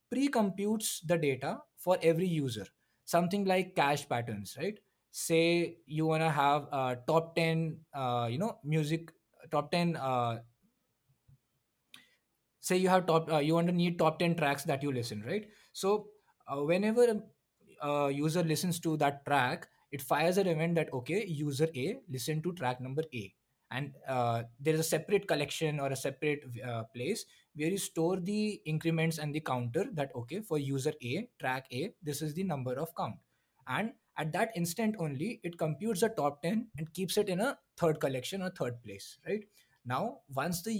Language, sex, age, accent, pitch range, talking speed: English, male, 20-39, Indian, 135-175 Hz, 180 wpm